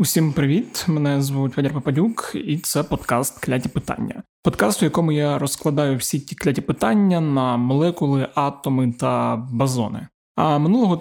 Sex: male